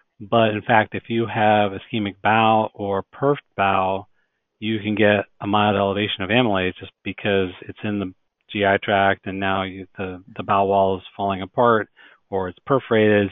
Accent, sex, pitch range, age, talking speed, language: American, male, 95-110 Hz, 40-59, 175 wpm, English